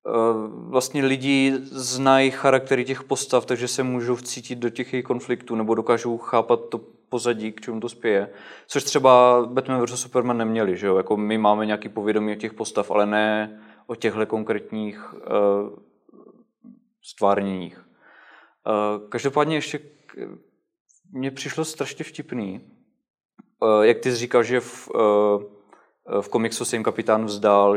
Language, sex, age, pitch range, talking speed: Czech, male, 20-39, 110-135 Hz, 145 wpm